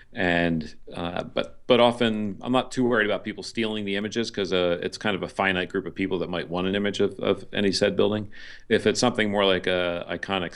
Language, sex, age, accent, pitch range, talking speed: English, male, 40-59, American, 85-105 Hz, 225 wpm